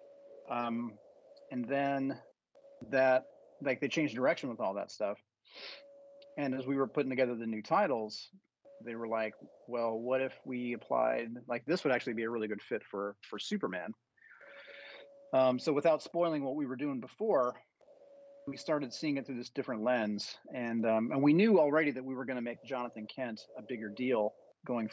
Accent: American